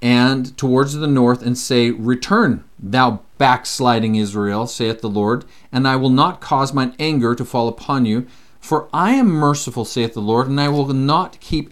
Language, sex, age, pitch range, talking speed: English, male, 40-59, 110-175 Hz, 185 wpm